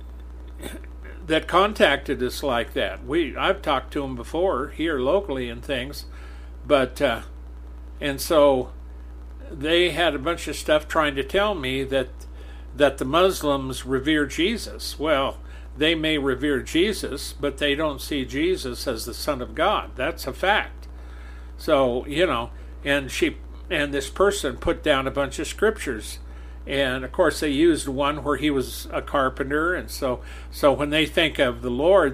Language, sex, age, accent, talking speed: English, male, 50-69, American, 160 wpm